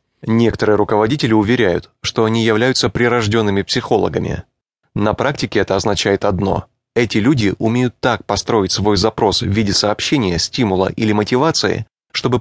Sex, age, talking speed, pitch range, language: male, 20-39, 130 wpm, 105-130 Hz, English